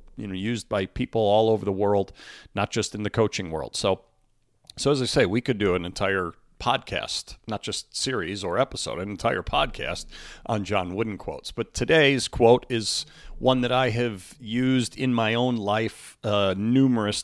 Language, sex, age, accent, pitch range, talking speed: English, male, 40-59, American, 105-135 Hz, 185 wpm